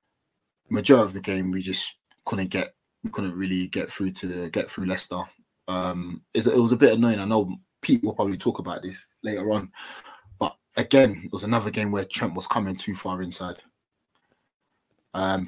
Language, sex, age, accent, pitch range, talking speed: English, male, 20-39, British, 95-115 Hz, 180 wpm